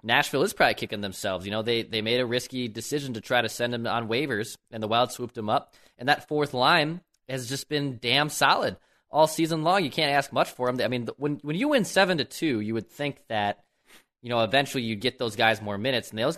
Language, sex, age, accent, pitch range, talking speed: English, male, 20-39, American, 115-140 Hz, 250 wpm